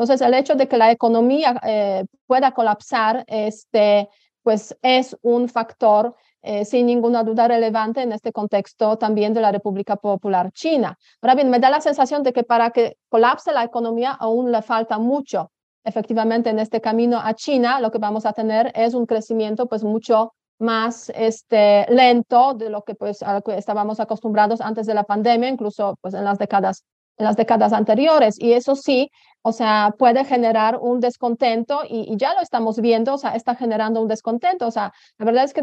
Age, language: 30-49, Spanish